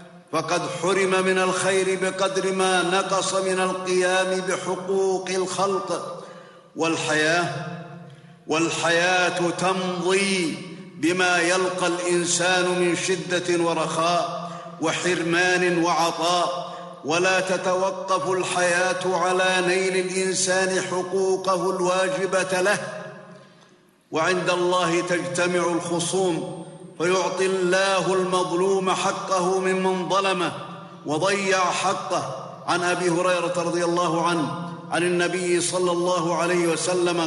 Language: Arabic